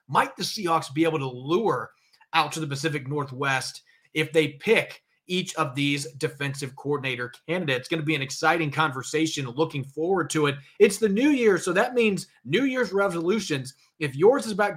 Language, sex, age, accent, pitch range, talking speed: English, male, 30-49, American, 140-175 Hz, 185 wpm